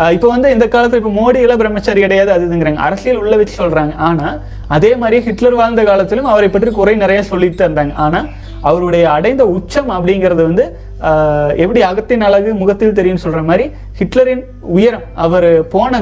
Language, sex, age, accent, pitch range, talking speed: Tamil, male, 30-49, native, 170-220 Hz, 120 wpm